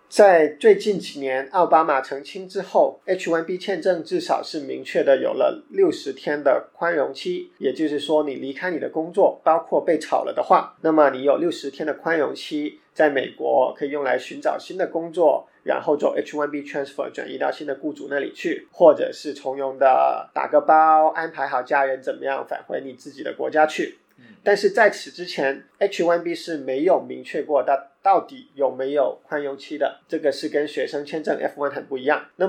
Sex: male